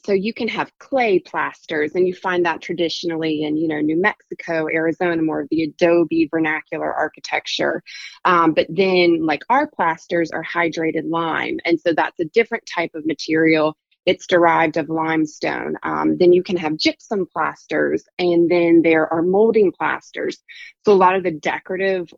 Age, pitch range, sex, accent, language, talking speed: 20-39, 165-220 Hz, female, American, English, 170 wpm